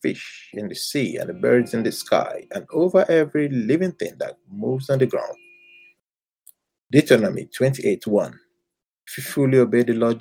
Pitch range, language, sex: 110-180 Hz, English, male